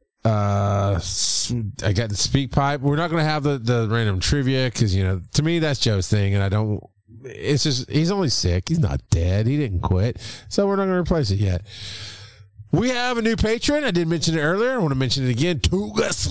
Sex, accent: male, American